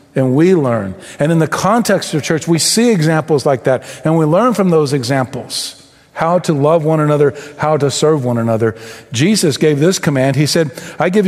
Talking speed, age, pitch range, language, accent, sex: 200 wpm, 50-69, 130-170 Hz, English, American, male